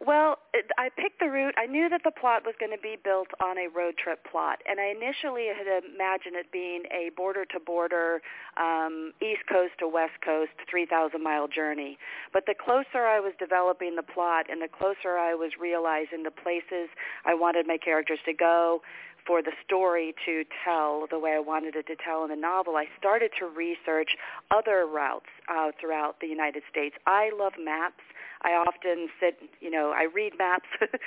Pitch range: 160-190 Hz